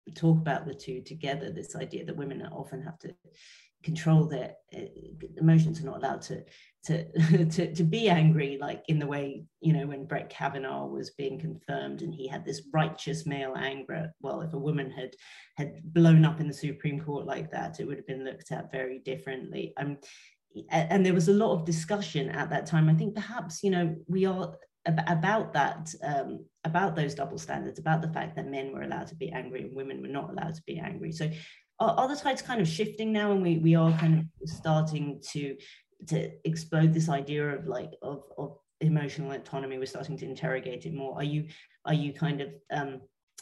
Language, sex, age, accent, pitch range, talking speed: English, female, 30-49, British, 140-170 Hz, 205 wpm